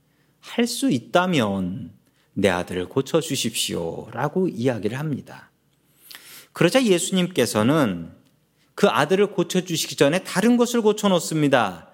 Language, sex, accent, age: Korean, male, native, 40-59